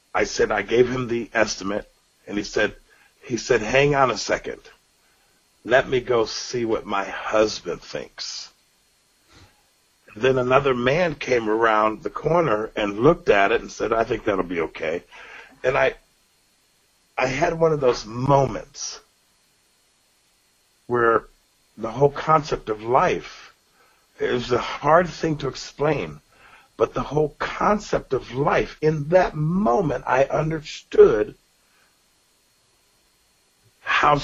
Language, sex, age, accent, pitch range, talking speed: English, male, 50-69, American, 130-170 Hz, 130 wpm